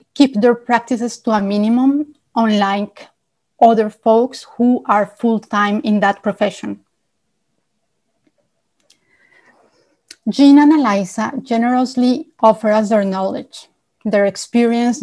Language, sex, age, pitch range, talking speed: English, female, 30-49, 210-255 Hz, 100 wpm